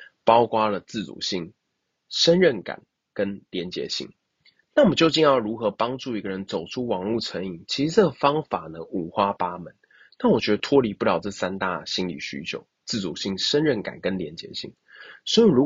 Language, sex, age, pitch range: Chinese, male, 20-39, 100-145 Hz